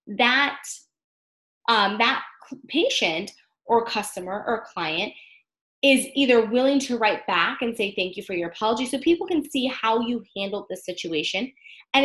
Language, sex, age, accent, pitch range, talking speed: English, female, 20-39, American, 190-265 Hz, 155 wpm